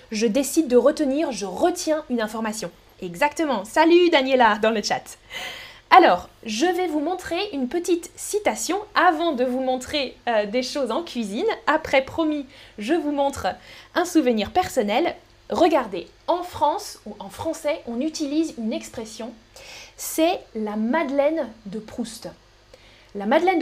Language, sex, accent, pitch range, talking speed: French, female, French, 235-320 Hz, 140 wpm